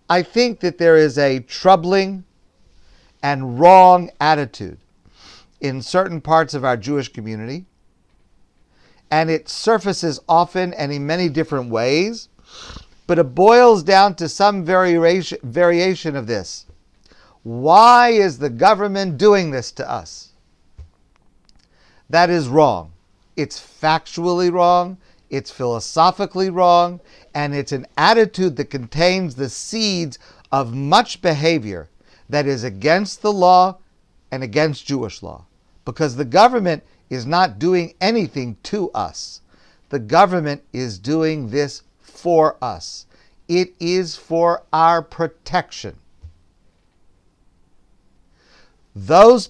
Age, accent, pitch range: 50-69, American, 115-180 Hz